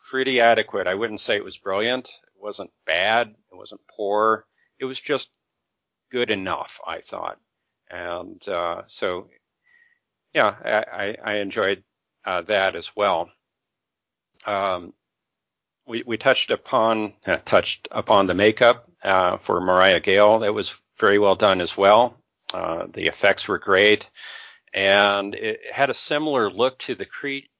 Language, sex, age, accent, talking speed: English, male, 50-69, American, 145 wpm